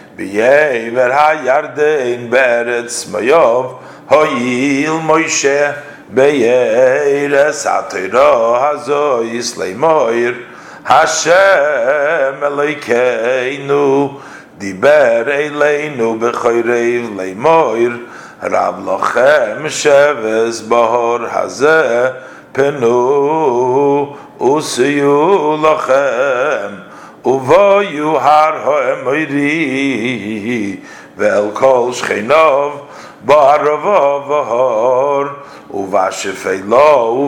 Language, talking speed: English, 70 wpm